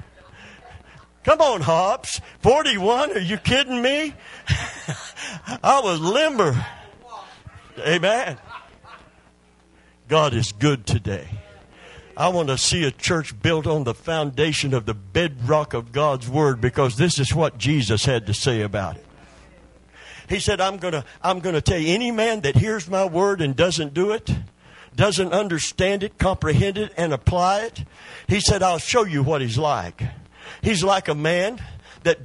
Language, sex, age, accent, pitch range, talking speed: English, male, 50-69, American, 135-225 Hz, 155 wpm